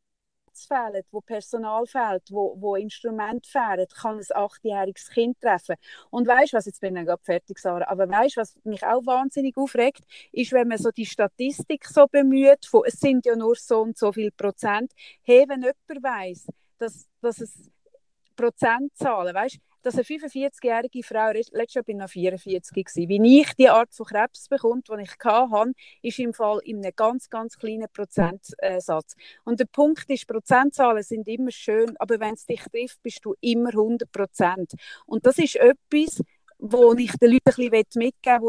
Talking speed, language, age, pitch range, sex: 180 wpm, German, 30-49, 210-250 Hz, female